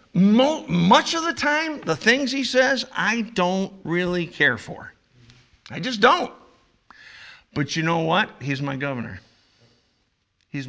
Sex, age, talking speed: male, 50-69, 140 wpm